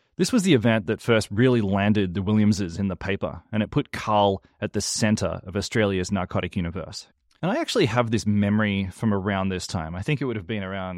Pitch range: 95-120 Hz